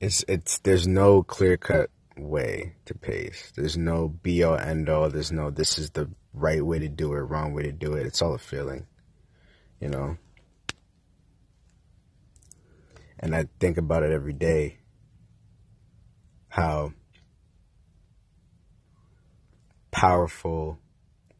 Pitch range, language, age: 80-100 Hz, English, 30-49